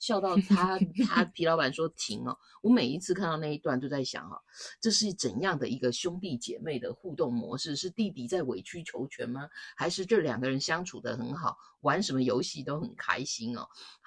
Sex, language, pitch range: female, Chinese, 130-195 Hz